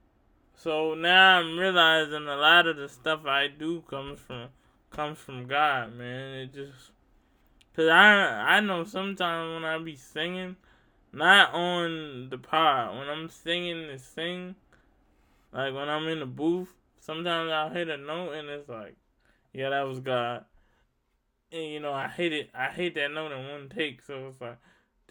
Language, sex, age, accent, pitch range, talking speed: English, male, 20-39, American, 135-175 Hz, 170 wpm